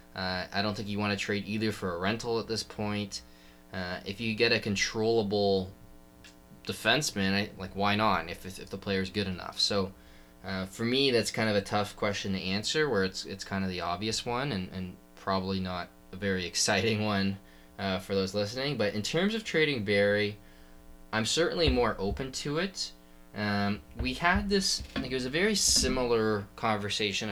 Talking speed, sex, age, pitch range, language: 200 wpm, male, 20-39, 95-110 Hz, English